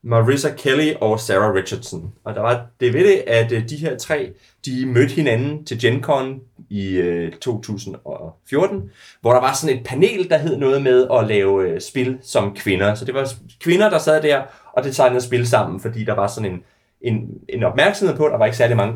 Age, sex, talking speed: 30-49, male, 200 wpm